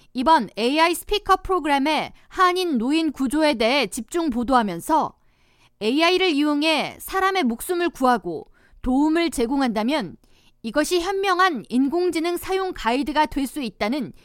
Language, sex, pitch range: Korean, female, 240-335 Hz